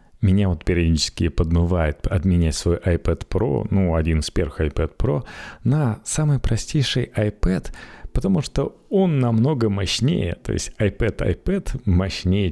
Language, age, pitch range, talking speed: Russian, 30-49, 85-105 Hz, 135 wpm